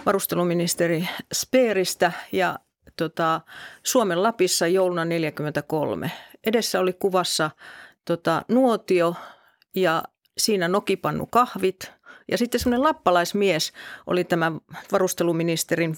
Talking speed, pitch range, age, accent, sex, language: 85 wpm, 170-205 Hz, 40-59, native, female, Finnish